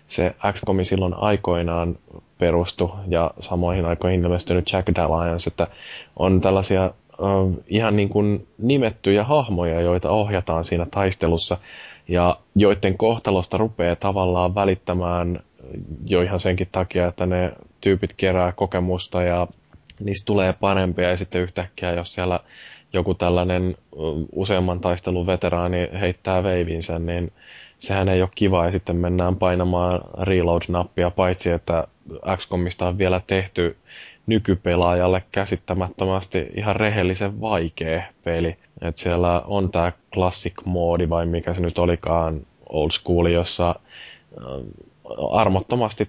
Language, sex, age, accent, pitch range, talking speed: Finnish, male, 10-29, native, 85-95 Hz, 115 wpm